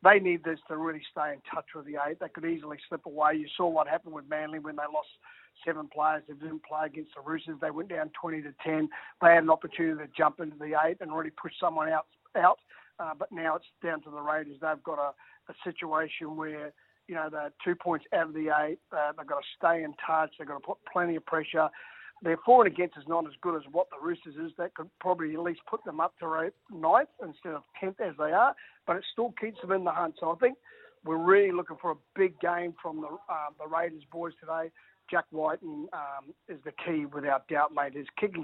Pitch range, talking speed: 155-175 Hz, 240 wpm